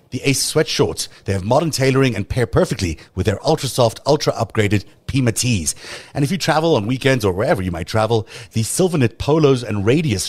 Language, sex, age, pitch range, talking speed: English, male, 30-49, 100-130 Hz, 190 wpm